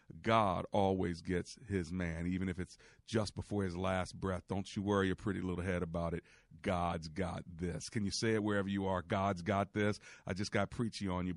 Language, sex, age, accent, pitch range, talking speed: English, male, 40-59, American, 95-120 Hz, 215 wpm